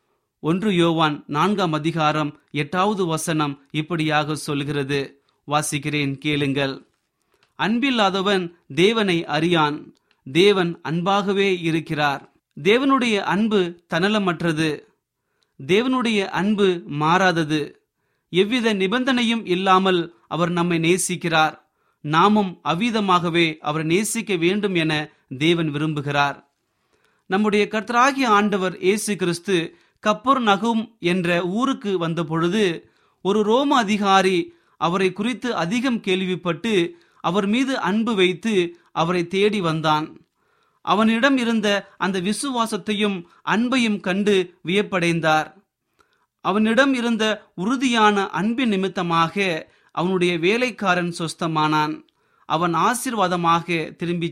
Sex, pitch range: male, 160-210 Hz